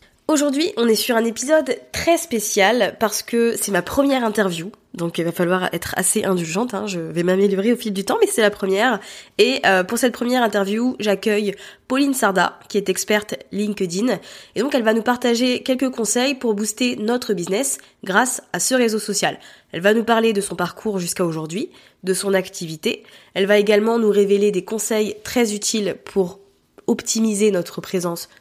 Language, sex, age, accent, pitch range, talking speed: French, female, 20-39, French, 195-230 Hz, 185 wpm